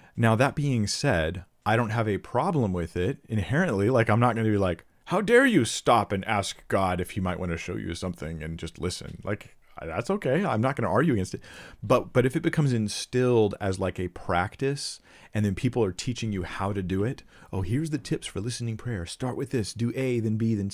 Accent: American